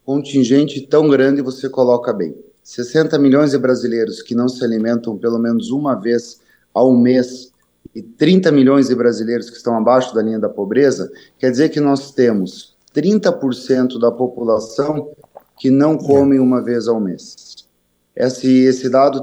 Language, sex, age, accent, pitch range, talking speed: Portuguese, male, 30-49, Brazilian, 125-150 Hz, 155 wpm